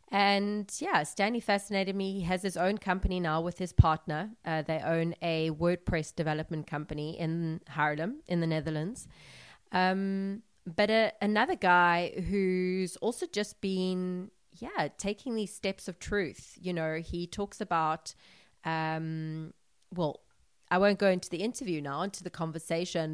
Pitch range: 160-190 Hz